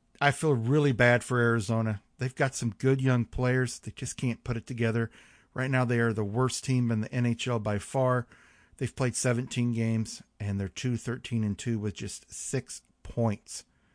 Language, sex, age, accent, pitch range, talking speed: English, male, 50-69, American, 115-130 Hz, 190 wpm